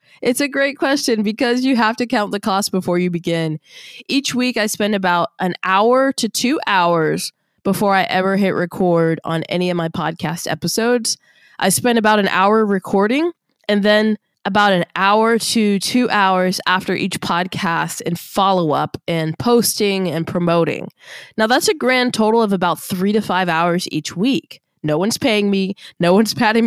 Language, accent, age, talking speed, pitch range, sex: English, American, 20-39, 180 wpm, 180-225 Hz, female